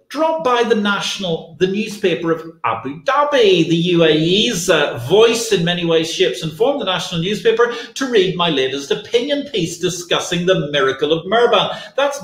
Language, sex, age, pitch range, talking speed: English, male, 40-59, 155-240 Hz, 165 wpm